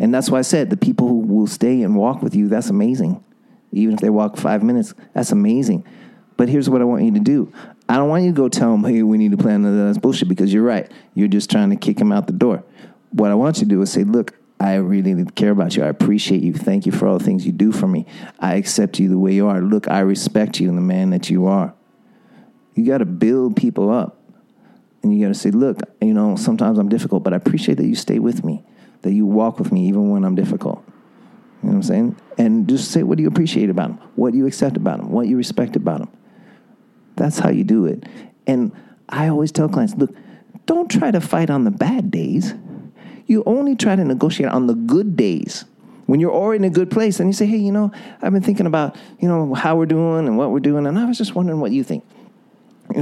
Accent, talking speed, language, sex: American, 255 wpm, English, male